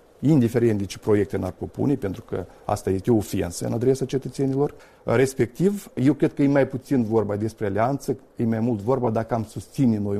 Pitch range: 110-130 Hz